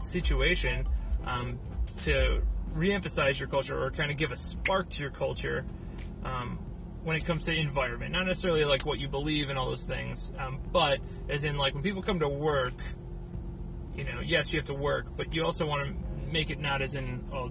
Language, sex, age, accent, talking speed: English, male, 30-49, American, 205 wpm